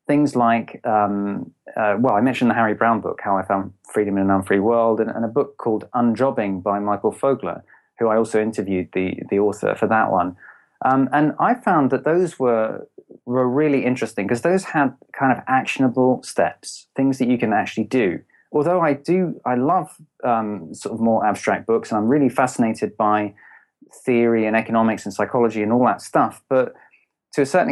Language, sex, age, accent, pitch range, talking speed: English, male, 30-49, British, 110-140 Hz, 195 wpm